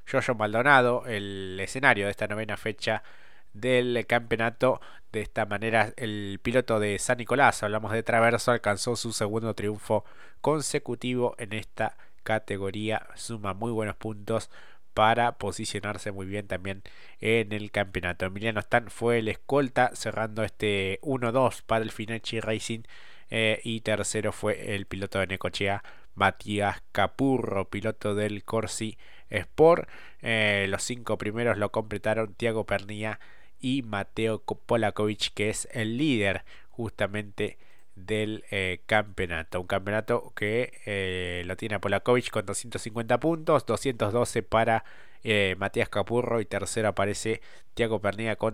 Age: 20-39